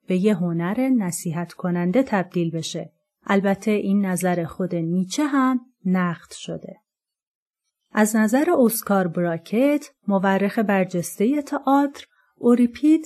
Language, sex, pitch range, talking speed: Persian, female, 185-250 Hz, 105 wpm